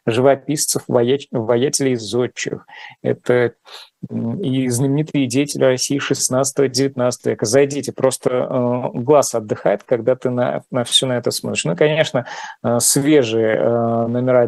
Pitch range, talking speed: 120-140 Hz, 110 wpm